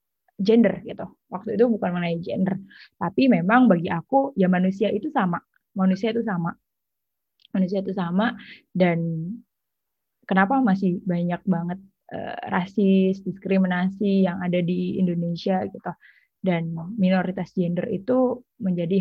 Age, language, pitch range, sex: 20-39, Indonesian, 180-205 Hz, female